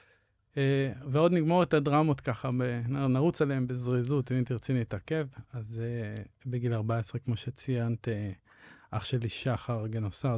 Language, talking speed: Hebrew, 120 wpm